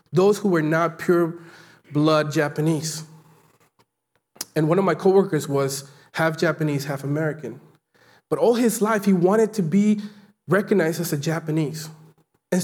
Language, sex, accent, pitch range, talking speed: English, male, American, 155-215 Hz, 145 wpm